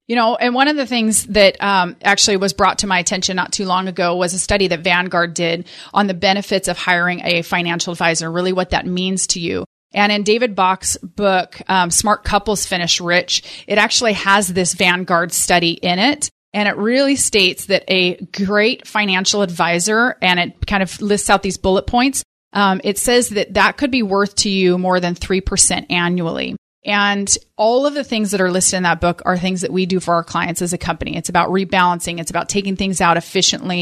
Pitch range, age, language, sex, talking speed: 175-205 Hz, 30-49, English, female, 215 wpm